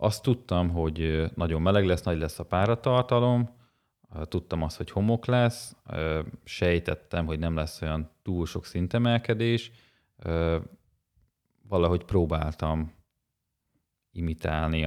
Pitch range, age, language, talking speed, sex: 80-95 Hz, 30-49, Hungarian, 105 wpm, male